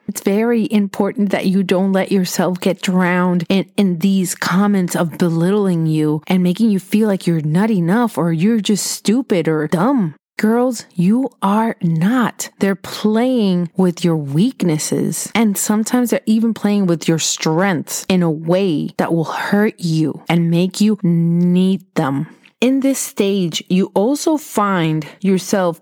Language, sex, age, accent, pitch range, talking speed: English, female, 30-49, American, 170-210 Hz, 155 wpm